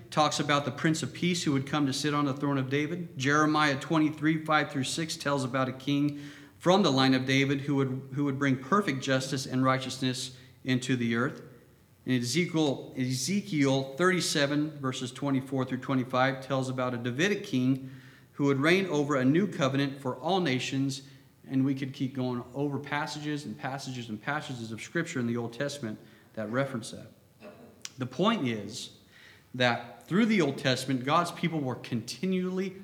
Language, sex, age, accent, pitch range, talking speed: English, male, 40-59, American, 125-150 Hz, 175 wpm